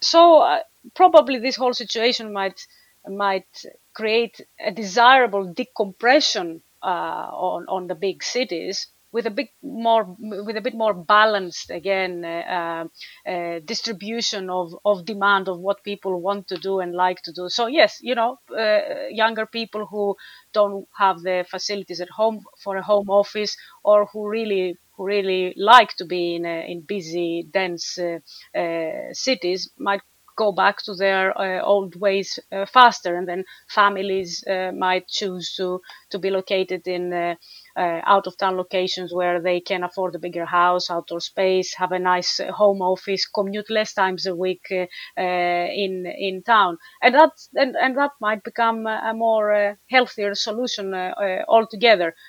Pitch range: 180-215 Hz